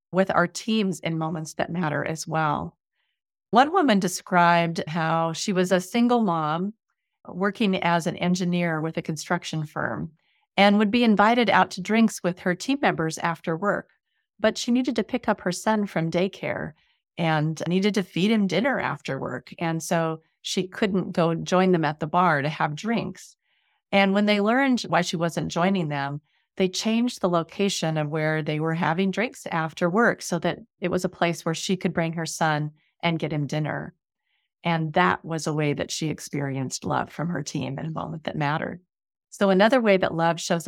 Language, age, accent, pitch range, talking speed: English, 40-59, American, 160-195 Hz, 190 wpm